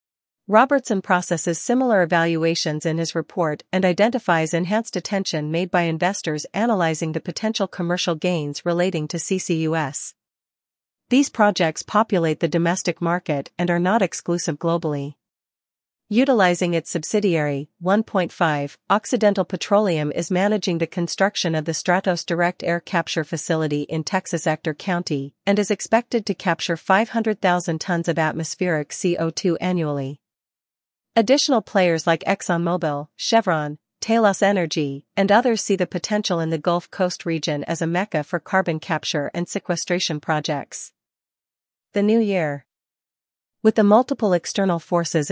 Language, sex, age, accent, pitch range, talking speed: English, female, 40-59, American, 160-195 Hz, 130 wpm